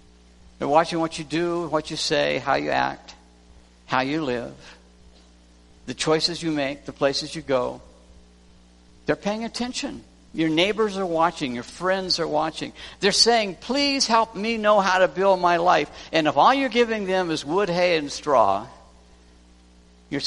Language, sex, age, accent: English, male, 60-79, American